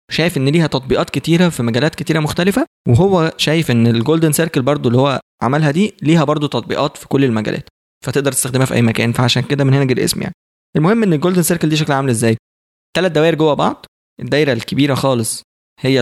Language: Arabic